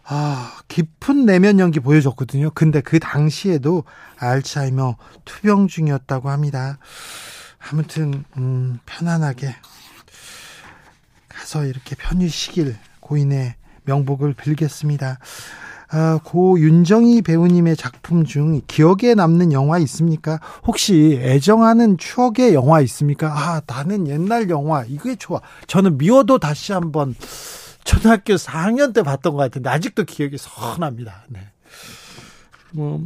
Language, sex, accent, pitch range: Korean, male, native, 135-175 Hz